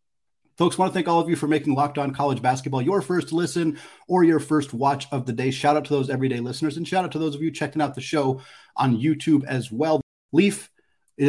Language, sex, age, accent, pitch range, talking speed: English, male, 30-49, American, 115-145 Hz, 250 wpm